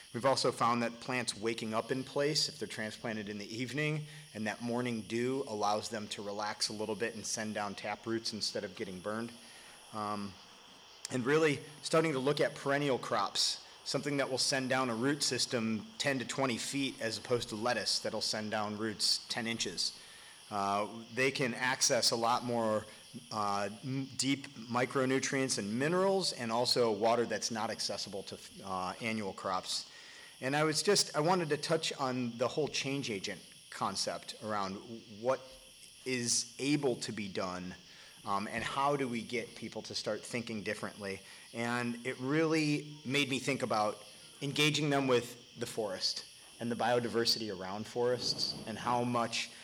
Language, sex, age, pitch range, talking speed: English, male, 30-49, 110-135 Hz, 170 wpm